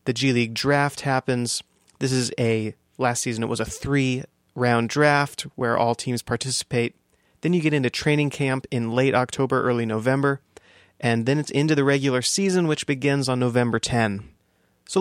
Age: 30-49